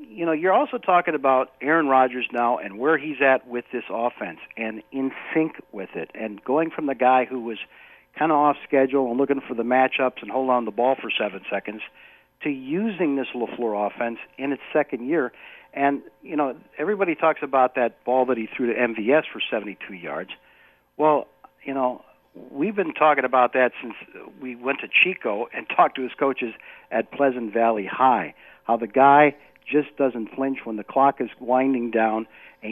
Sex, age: male, 60-79